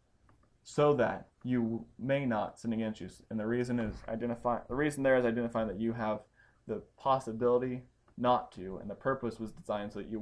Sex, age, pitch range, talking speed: male, 20-39, 115-130 Hz, 195 wpm